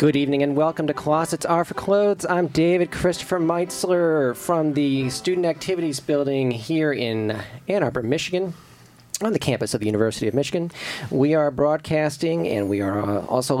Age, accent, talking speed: 40-59, American, 170 wpm